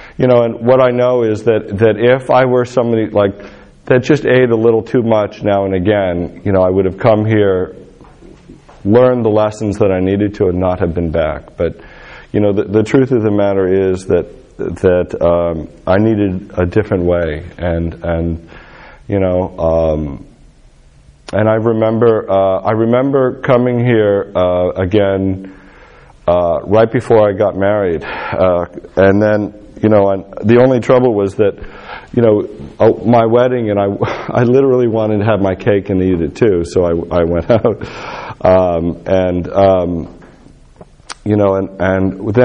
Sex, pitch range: male, 90-115 Hz